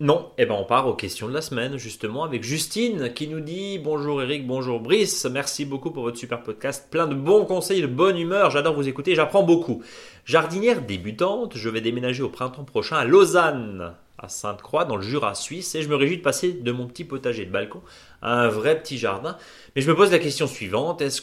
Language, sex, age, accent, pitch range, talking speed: French, male, 30-49, French, 120-160 Hz, 225 wpm